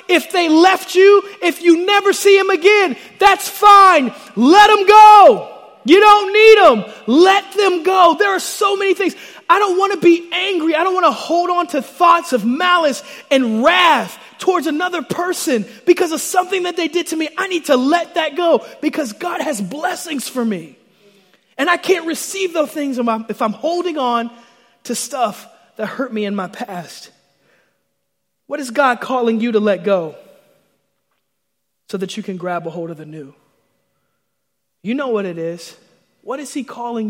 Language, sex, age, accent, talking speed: English, male, 30-49, American, 185 wpm